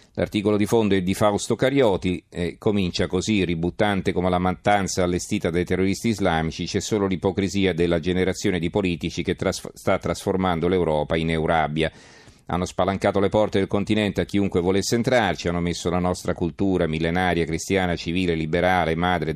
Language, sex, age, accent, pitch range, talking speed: Italian, male, 40-59, native, 85-100 Hz, 160 wpm